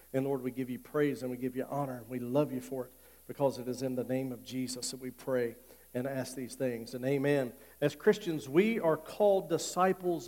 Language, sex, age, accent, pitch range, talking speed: English, male, 50-69, American, 150-195 Hz, 235 wpm